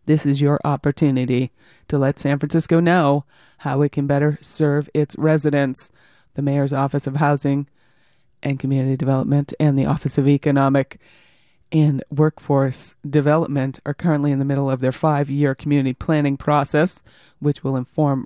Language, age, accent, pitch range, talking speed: English, 30-49, American, 140-155 Hz, 150 wpm